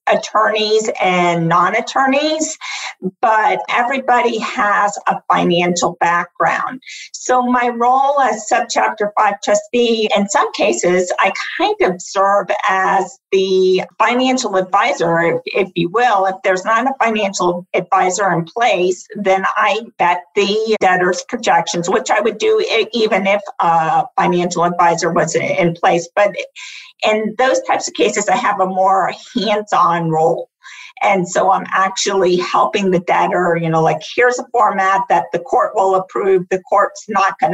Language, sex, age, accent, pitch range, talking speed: English, female, 50-69, American, 180-235 Hz, 145 wpm